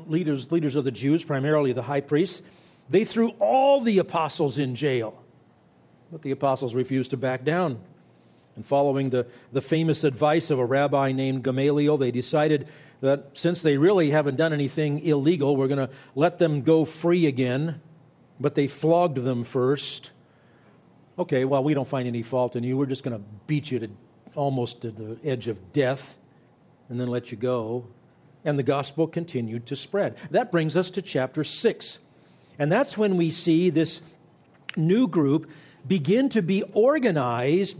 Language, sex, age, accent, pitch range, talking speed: English, male, 50-69, American, 135-165 Hz, 170 wpm